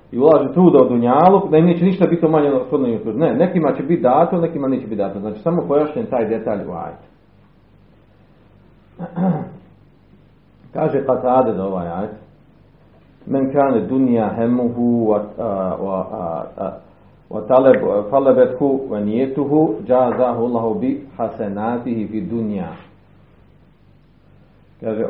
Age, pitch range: 40-59, 105-145 Hz